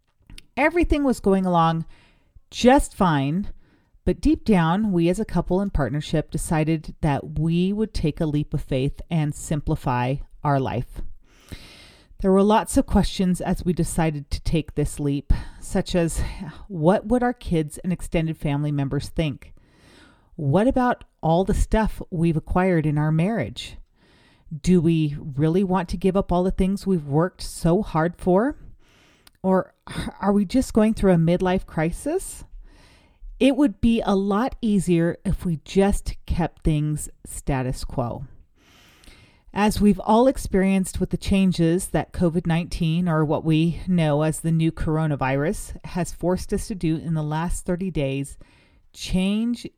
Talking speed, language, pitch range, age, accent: 150 wpm, English, 155-195 Hz, 40-59, American